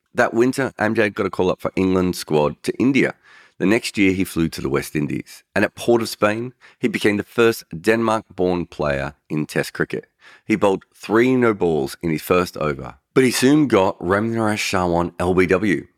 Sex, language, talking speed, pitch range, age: male, English, 185 wpm, 80-110 Hz, 40-59